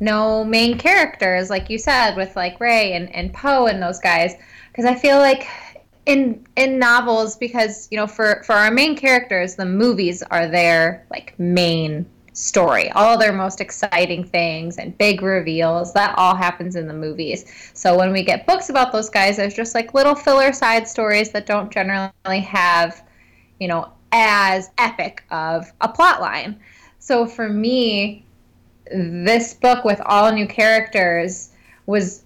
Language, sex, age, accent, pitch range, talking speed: English, female, 20-39, American, 180-225 Hz, 165 wpm